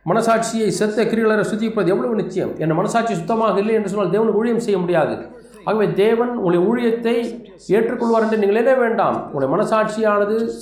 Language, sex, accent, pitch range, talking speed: Tamil, male, native, 195-225 Hz, 155 wpm